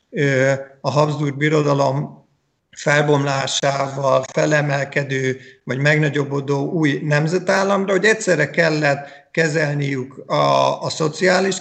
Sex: male